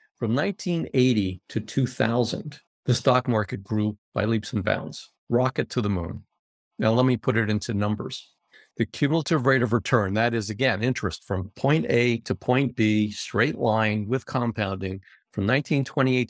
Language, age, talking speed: English, 50-69, 160 wpm